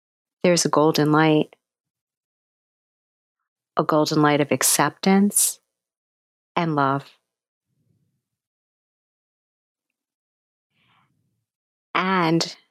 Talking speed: 55 wpm